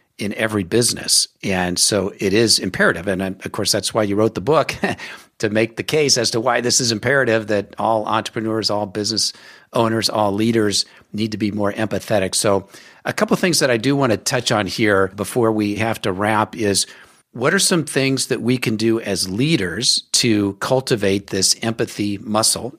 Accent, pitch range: American, 100-115 Hz